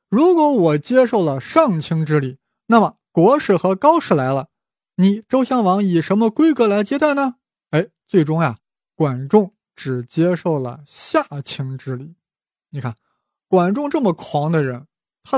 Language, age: Chinese, 20-39